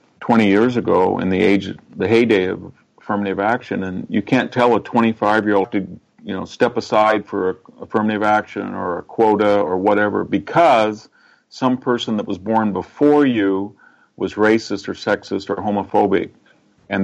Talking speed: 160 wpm